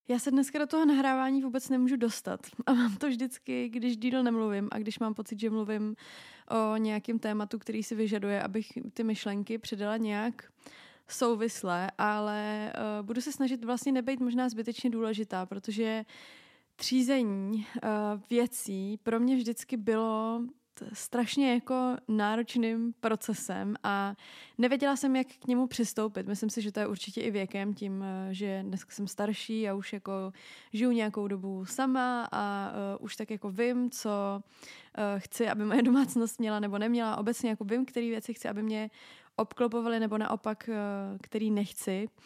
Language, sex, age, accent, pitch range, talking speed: Czech, female, 20-39, native, 210-245 Hz, 155 wpm